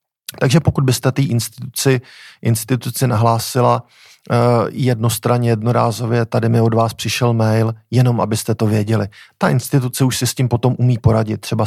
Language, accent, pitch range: Czech, native, 110-130 Hz